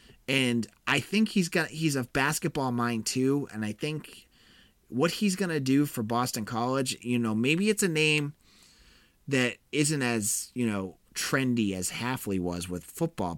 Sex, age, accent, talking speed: male, 30-49, American, 170 wpm